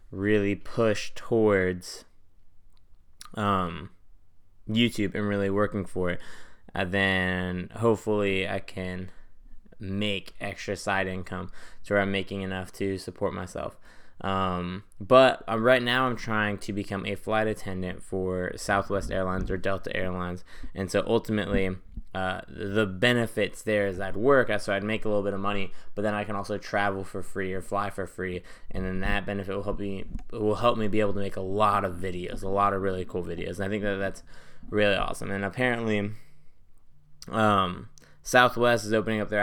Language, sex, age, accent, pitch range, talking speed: English, male, 10-29, American, 95-105 Hz, 170 wpm